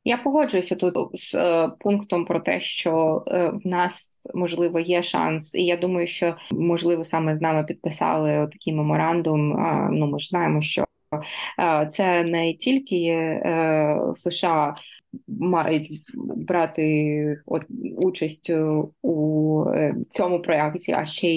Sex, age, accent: female, 20-39, native